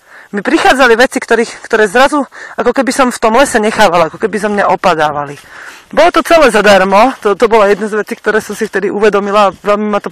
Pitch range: 205-245 Hz